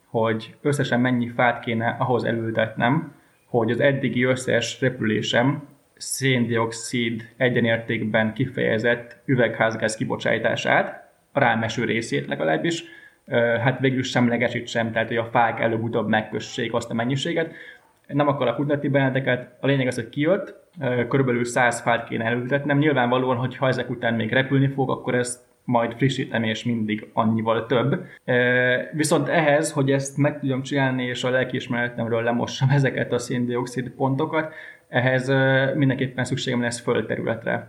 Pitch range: 115-135 Hz